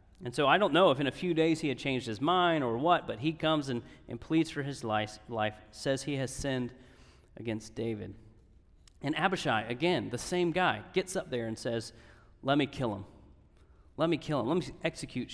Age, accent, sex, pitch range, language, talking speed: 30-49, American, male, 110-150 Hz, English, 215 wpm